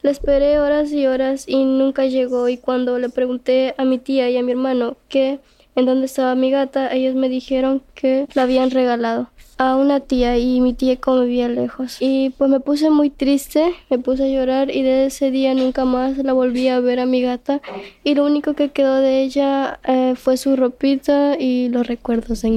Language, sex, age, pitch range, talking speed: English, female, 10-29, 185-265 Hz, 210 wpm